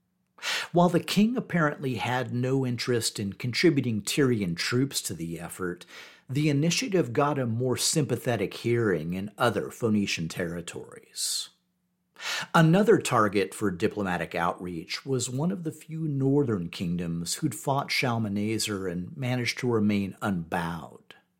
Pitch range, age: 105-155 Hz, 50-69